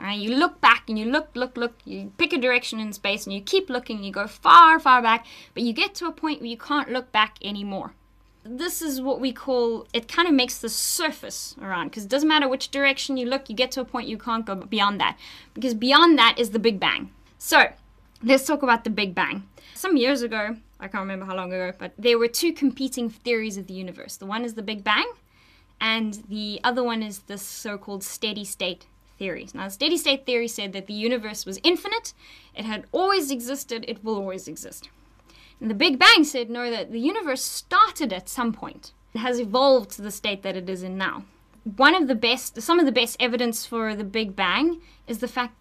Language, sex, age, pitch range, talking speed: English, female, 20-39, 210-270 Hz, 225 wpm